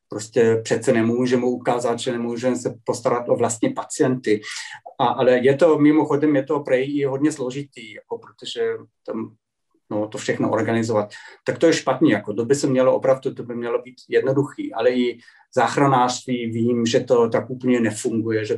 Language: Czech